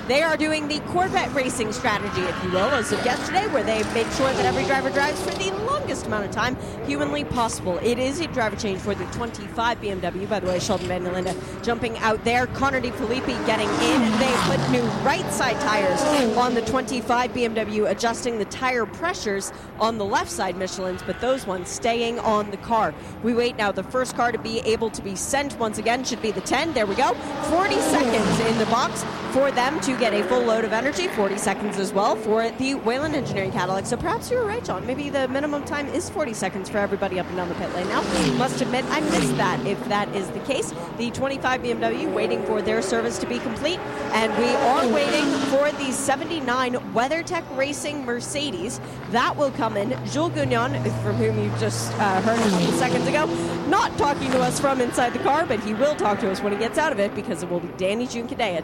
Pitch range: 200-260 Hz